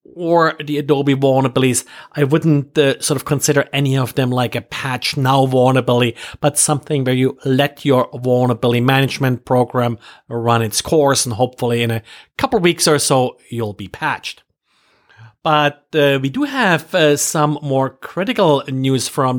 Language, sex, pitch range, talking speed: English, male, 130-165 Hz, 165 wpm